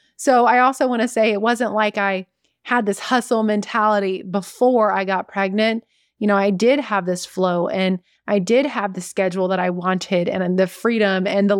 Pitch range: 190-235 Hz